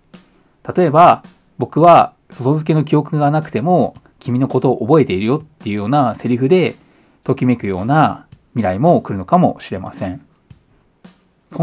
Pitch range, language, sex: 105-175 Hz, Japanese, male